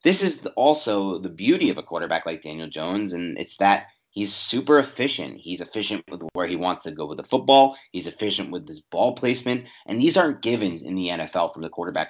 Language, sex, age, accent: English, male, 30-49, American